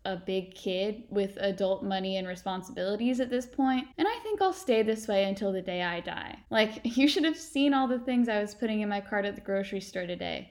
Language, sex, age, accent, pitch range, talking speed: English, female, 10-29, American, 195-260 Hz, 240 wpm